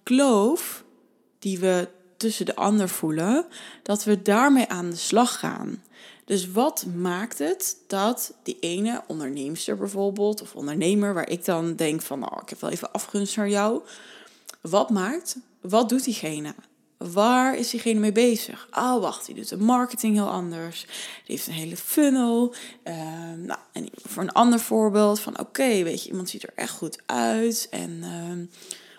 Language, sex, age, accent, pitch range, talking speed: Dutch, female, 20-39, Dutch, 180-240 Hz, 170 wpm